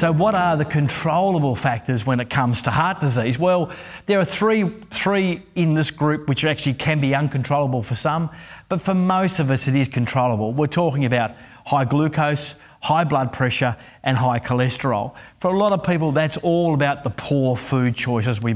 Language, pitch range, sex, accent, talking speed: English, 125-155 Hz, male, Australian, 190 wpm